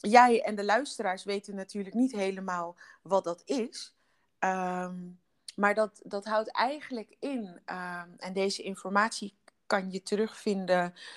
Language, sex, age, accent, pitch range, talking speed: Dutch, female, 30-49, Dutch, 180-220 Hz, 135 wpm